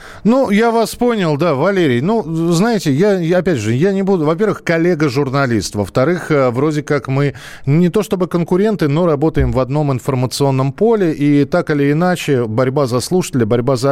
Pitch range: 130-175 Hz